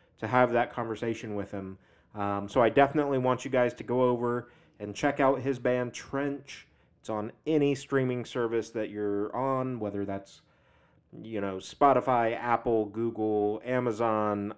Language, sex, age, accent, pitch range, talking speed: English, male, 30-49, American, 105-125 Hz, 155 wpm